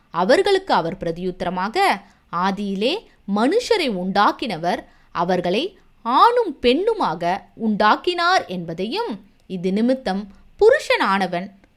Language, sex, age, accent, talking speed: Tamil, female, 20-39, native, 70 wpm